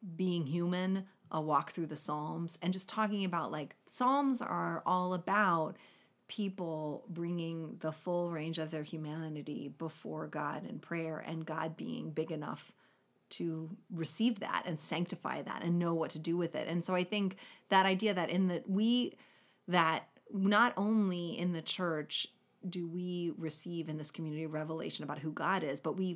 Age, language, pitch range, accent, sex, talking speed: 30-49, English, 160-190 Hz, American, female, 170 wpm